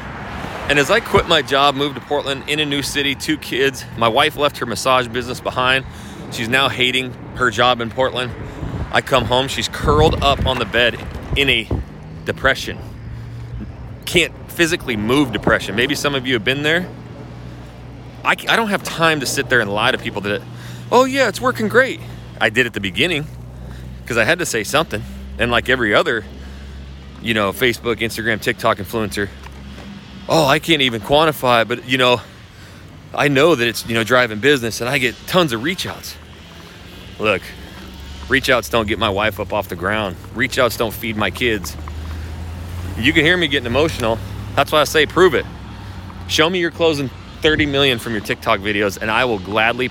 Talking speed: 190 wpm